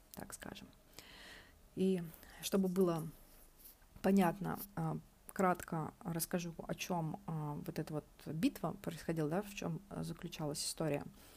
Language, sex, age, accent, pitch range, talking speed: Russian, female, 30-49, native, 165-200 Hz, 105 wpm